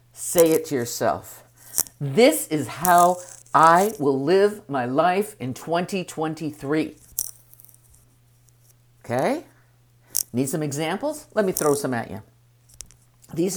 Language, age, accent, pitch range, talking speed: English, 50-69, American, 120-185 Hz, 110 wpm